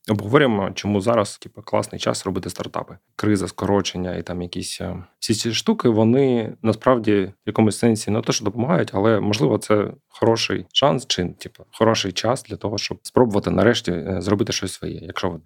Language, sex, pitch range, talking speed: Ukrainian, male, 95-115 Hz, 170 wpm